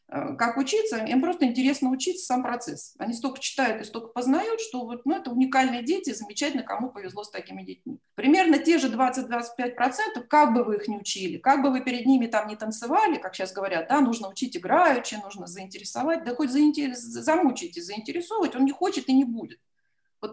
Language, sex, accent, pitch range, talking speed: Russian, female, native, 225-300 Hz, 185 wpm